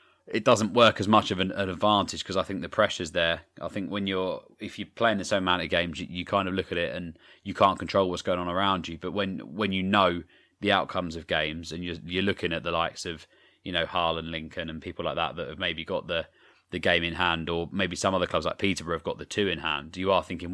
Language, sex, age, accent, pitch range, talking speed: English, male, 20-39, British, 85-95 Hz, 270 wpm